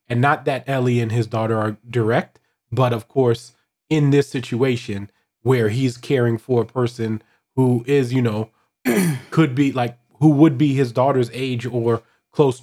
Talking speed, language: 170 wpm, English